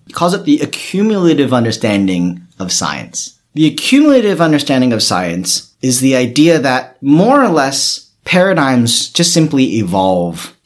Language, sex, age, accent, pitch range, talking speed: English, male, 40-59, American, 130-190 Hz, 135 wpm